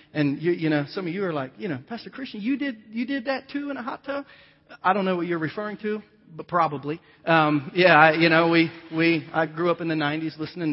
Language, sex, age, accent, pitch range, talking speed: English, male, 40-59, American, 145-170 Hz, 255 wpm